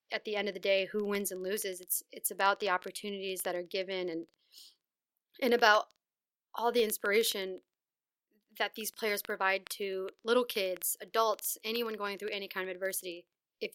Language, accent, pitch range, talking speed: English, American, 190-230 Hz, 175 wpm